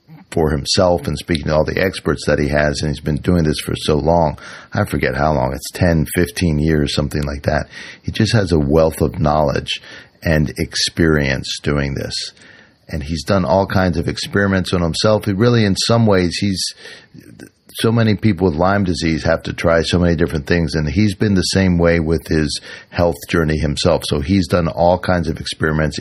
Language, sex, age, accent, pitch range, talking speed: English, male, 50-69, American, 80-100 Hz, 200 wpm